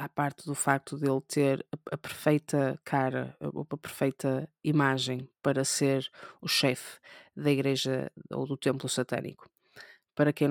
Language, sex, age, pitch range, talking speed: Portuguese, female, 20-39, 140-170 Hz, 155 wpm